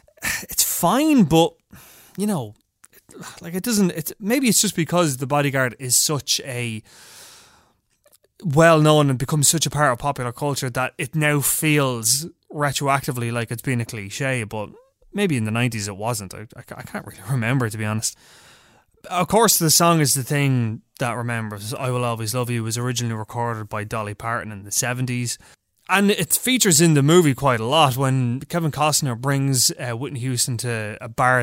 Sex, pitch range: male, 115-150 Hz